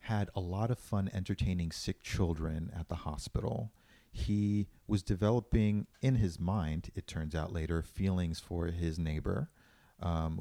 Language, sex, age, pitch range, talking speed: English, male, 40-59, 85-105 Hz, 150 wpm